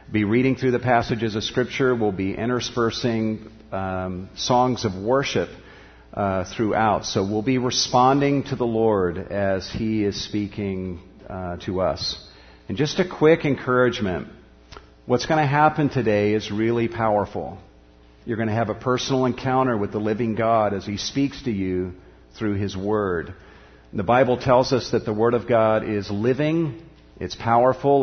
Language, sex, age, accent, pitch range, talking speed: English, male, 50-69, American, 100-125 Hz, 160 wpm